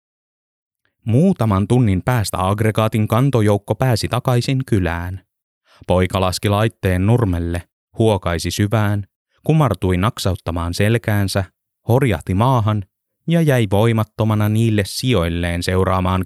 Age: 20-39